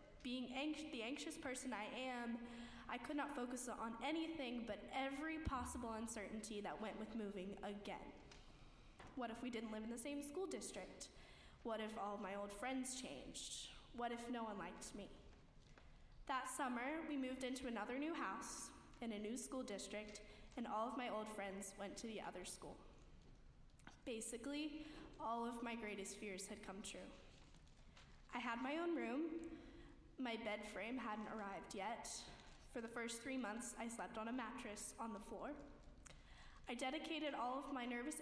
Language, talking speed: English, 170 wpm